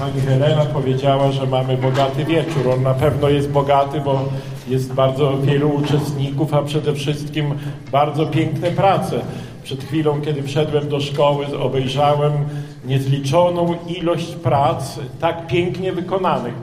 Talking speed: 130 wpm